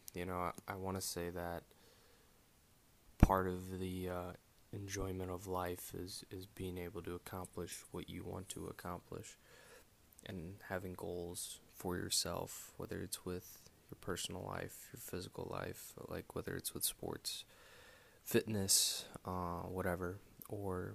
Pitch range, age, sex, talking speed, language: 90-100 Hz, 20-39, male, 140 wpm, English